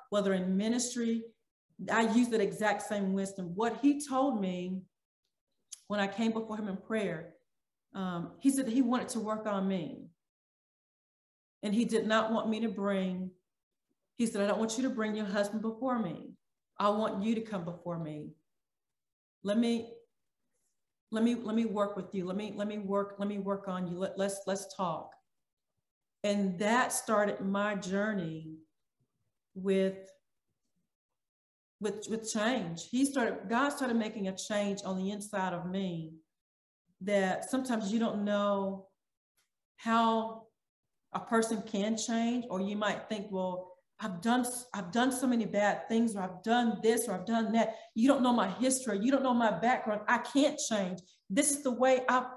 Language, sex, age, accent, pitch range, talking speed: English, female, 40-59, American, 195-230 Hz, 170 wpm